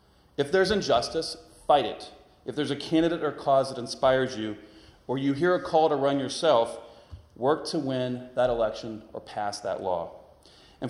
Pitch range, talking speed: 105-150 Hz, 175 wpm